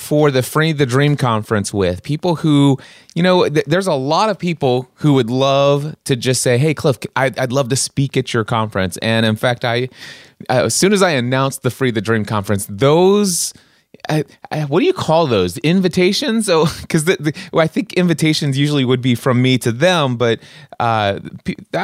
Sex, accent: male, American